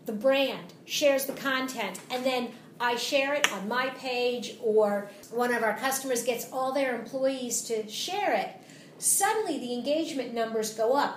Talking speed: 165 wpm